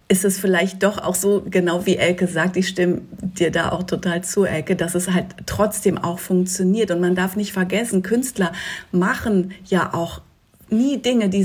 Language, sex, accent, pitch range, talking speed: German, female, German, 170-195 Hz, 190 wpm